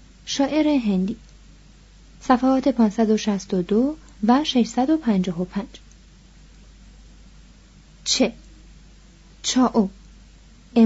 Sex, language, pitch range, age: female, Persian, 195-255 Hz, 30-49